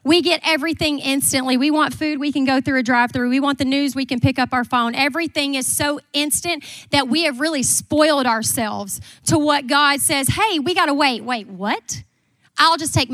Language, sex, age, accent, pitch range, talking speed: English, female, 30-49, American, 245-310 Hz, 210 wpm